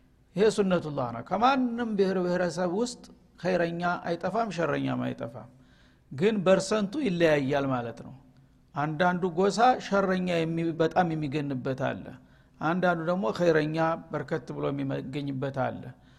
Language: Amharic